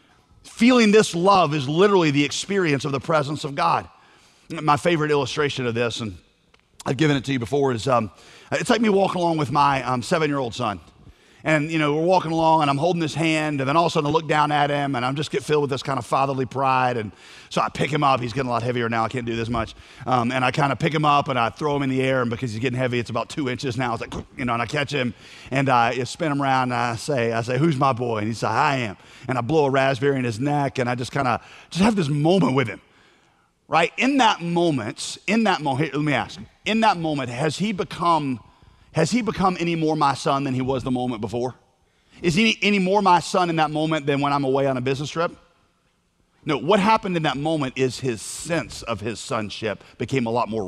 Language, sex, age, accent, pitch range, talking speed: English, male, 40-59, American, 125-165 Hz, 260 wpm